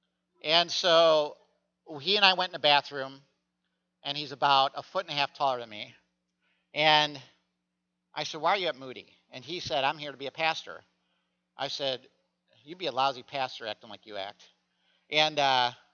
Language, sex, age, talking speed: English, male, 50-69, 190 wpm